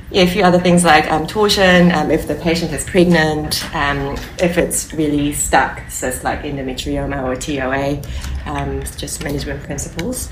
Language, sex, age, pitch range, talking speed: English, female, 20-39, 140-175 Hz, 150 wpm